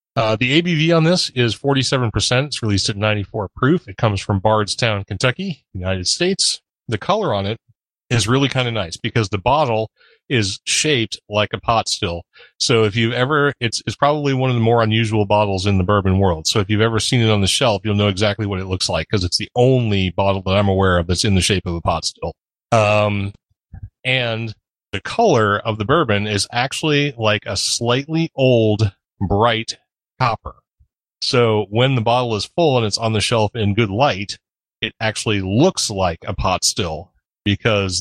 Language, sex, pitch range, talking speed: English, male, 100-120 Hz, 195 wpm